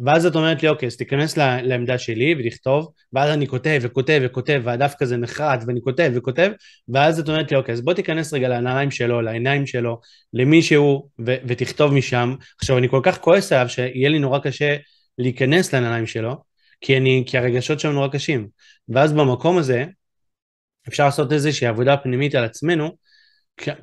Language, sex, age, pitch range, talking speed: Hebrew, male, 20-39, 125-150 Hz, 170 wpm